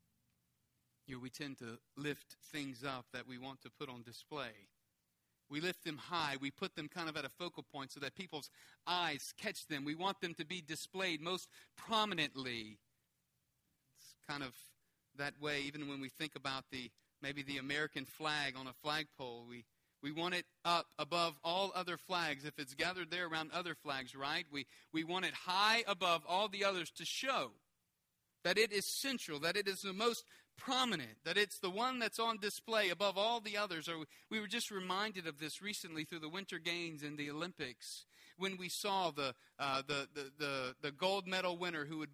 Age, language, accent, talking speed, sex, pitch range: 40-59, English, American, 195 wpm, male, 140-180 Hz